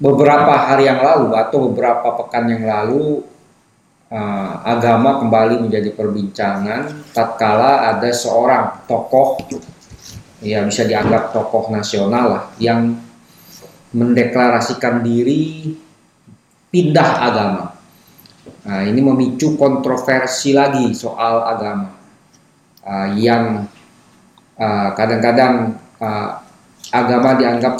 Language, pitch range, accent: Indonesian, 110-125 Hz, native